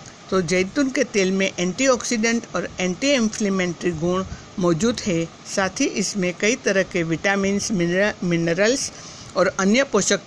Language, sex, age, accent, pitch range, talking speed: Hindi, female, 60-79, native, 180-225 Hz, 135 wpm